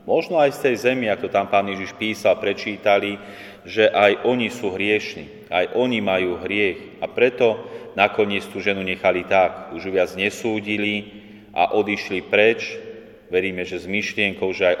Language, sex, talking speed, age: Slovak, male, 160 wpm, 30-49